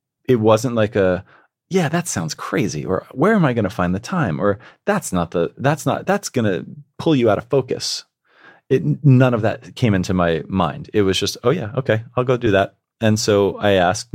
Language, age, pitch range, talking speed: English, 30-49, 90-110 Hz, 225 wpm